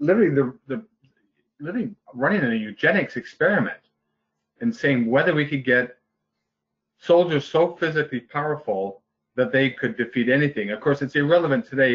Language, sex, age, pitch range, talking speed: English, male, 40-59, 110-140 Hz, 140 wpm